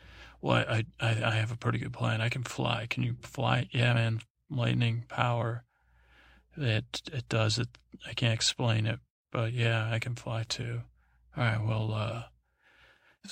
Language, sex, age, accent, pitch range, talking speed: English, male, 40-59, American, 110-120 Hz, 175 wpm